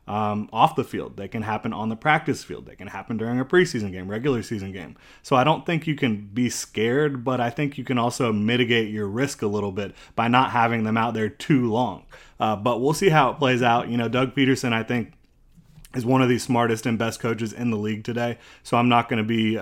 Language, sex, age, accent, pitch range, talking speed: English, male, 30-49, American, 110-130 Hz, 250 wpm